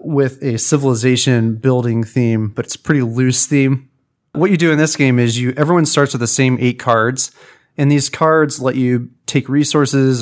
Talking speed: 190 wpm